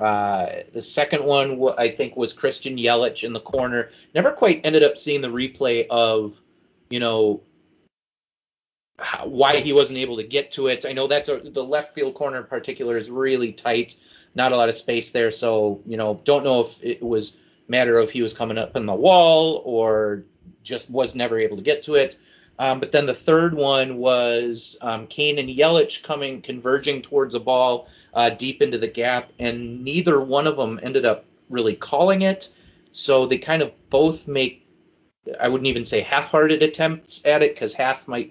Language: English